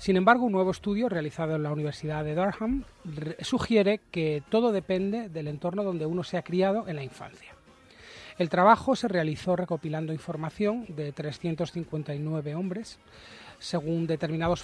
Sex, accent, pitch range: male, Spanish, 160-195 Hz